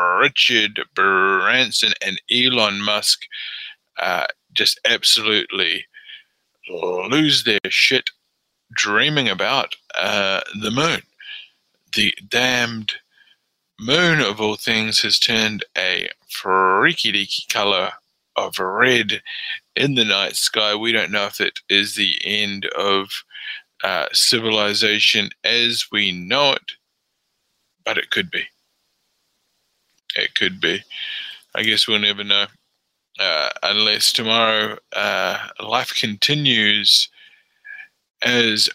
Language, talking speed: English, 105 wpm